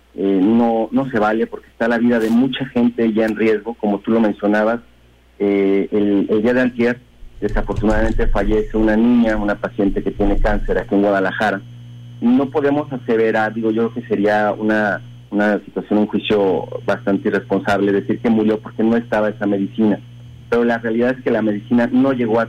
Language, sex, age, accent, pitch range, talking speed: Spanish, male, 40-59, Mexican, 110-120 Hz, 185 wpm